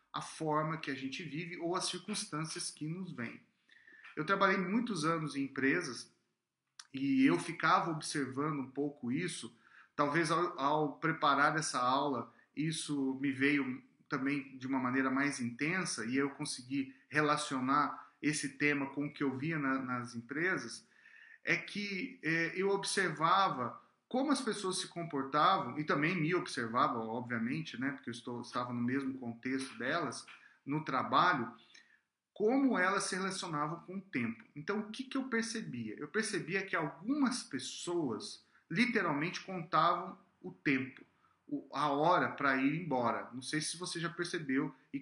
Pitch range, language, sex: 135-190 Hz, Portuguese, male